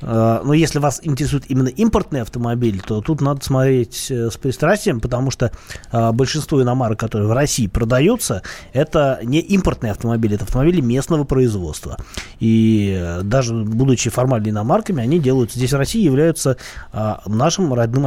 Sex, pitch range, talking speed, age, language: male, 115-145 Hz, 140 wpm, 20-39, Russian